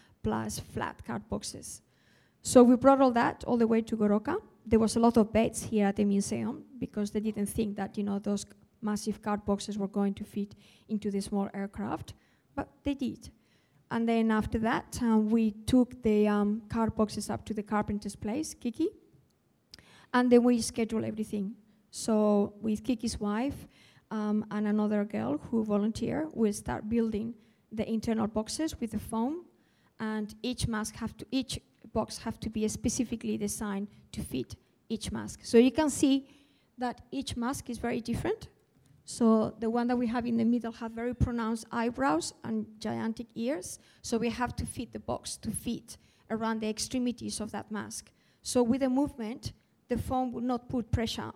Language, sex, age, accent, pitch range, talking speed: English, female, 20-39, Spanish, 210-240 Hz, 180 wpm